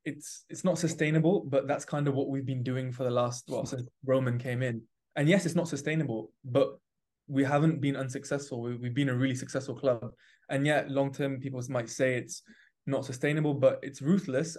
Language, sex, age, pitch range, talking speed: English, male, 20-39, 130-145 Hz, 205 wpm